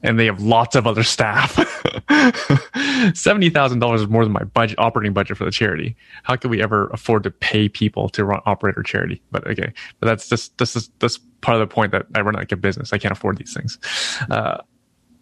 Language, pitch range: English, 110-135 Hz